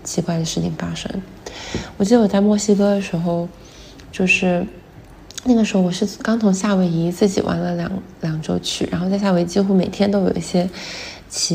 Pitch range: 175-205 Hz